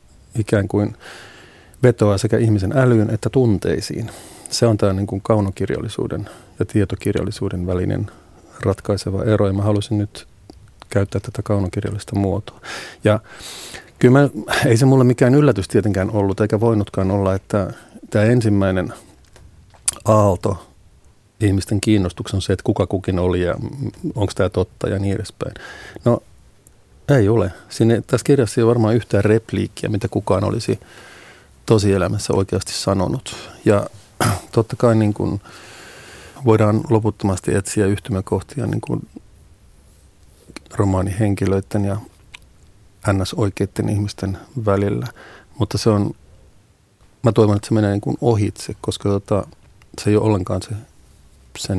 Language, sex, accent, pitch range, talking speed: Finnish, male, native, 95-110 Hz, 130 wpm